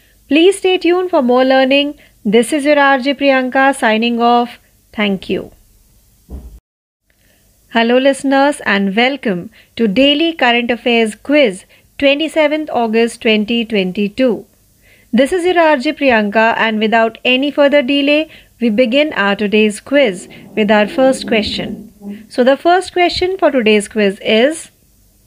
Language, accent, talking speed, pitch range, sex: Marathi, native, 130 wpm, 215-285 Hz, female